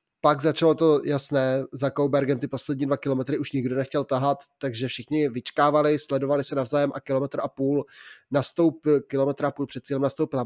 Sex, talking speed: male, 180 wpm